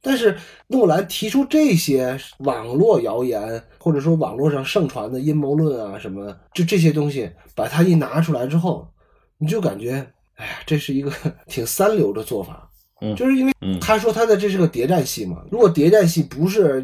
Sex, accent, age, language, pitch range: male, native, 20-39, Chinese, 135-175 Hz